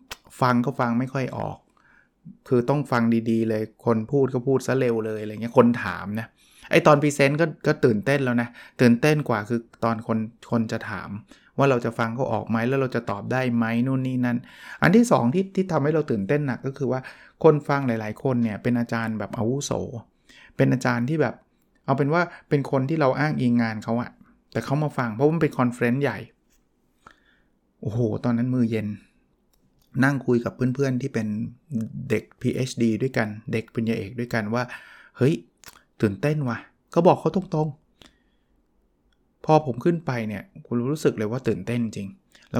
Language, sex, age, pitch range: Thai, male, 20-39, 115-140 Hz